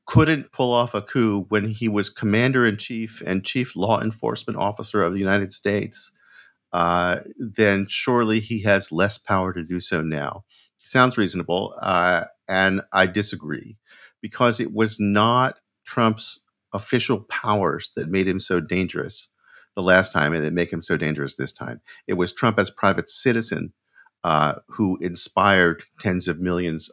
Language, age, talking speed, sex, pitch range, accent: English, 50-69, 155 wpm, male, 85-110 Hz, American